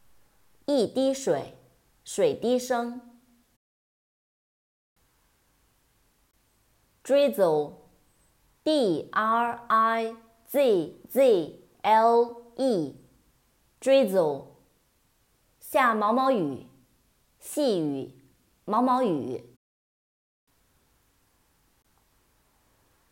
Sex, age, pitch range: female, 30-49, 160-245 Hz